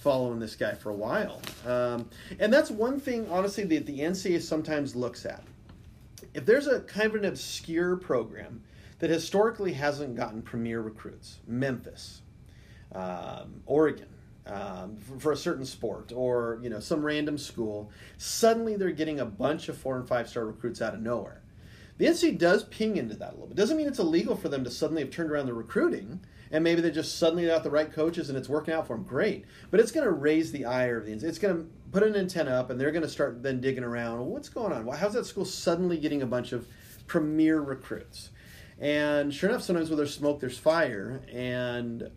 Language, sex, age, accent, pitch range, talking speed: English, male, 40-59, American, 120-165 Hz, 210 wpm